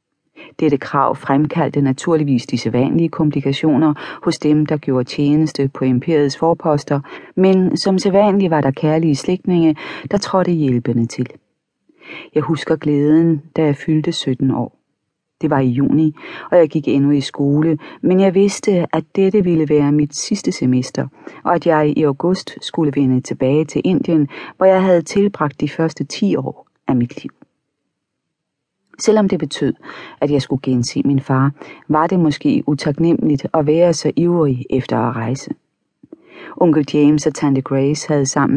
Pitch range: 140-170 Hz